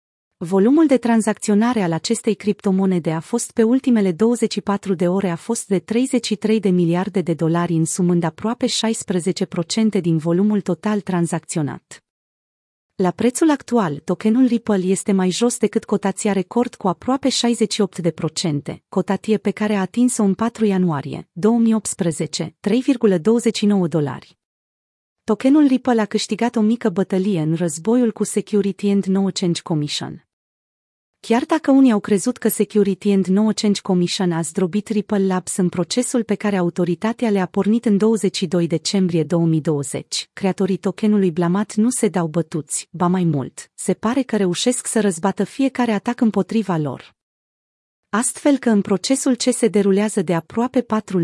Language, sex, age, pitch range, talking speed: Romanian, female, 30-49, 175-220 Hz, 145 wpm